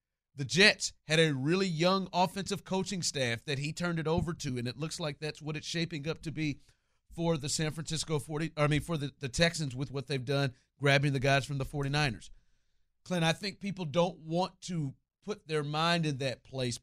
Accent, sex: American, male